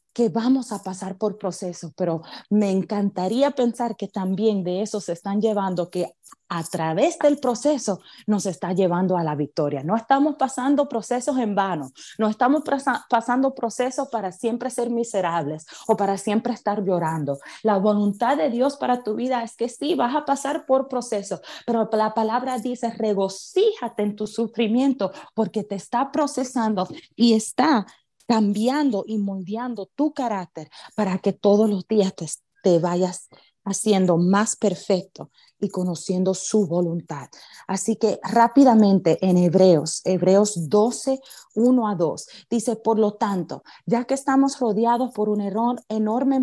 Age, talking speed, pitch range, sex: 30-49, 150 wpm, 190-245 Hz, female